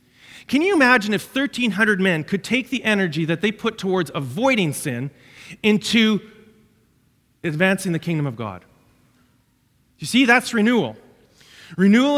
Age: 40-59